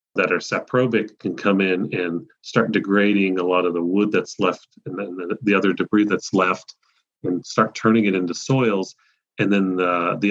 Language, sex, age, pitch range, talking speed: English, male, 40-59, 95-120 Hz, 185 wpm